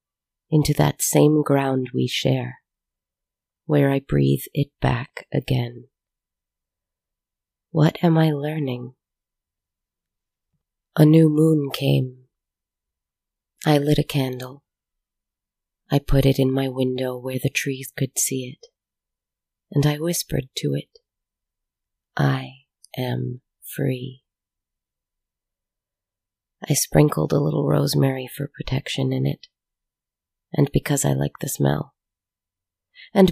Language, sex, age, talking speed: English, female, 30-49, 110 wpm